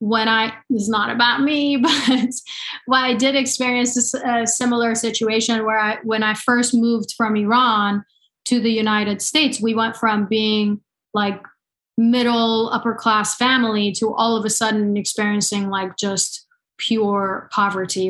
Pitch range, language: 210-245 Hz, English